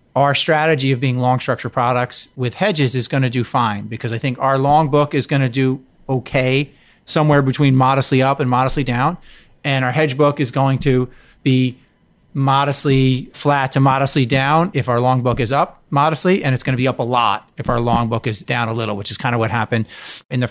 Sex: male